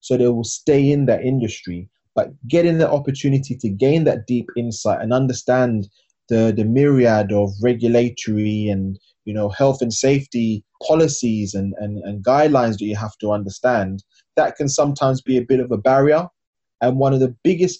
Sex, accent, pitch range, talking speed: male, British, 110-135 Hz, 180 wpm